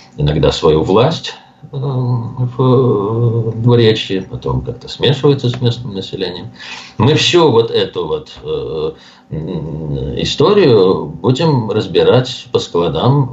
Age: 50-69